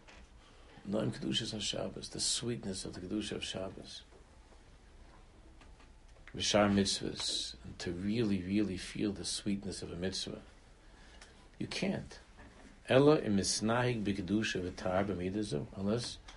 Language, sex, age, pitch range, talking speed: English, male, 60-79, 90-110 Hz, 90 wpm